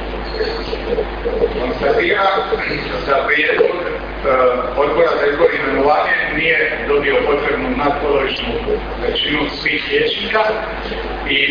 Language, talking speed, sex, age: Croatian, 90 wpm, male, 50-69